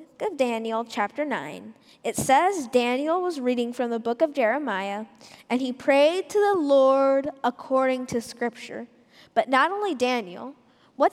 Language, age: English, 10-29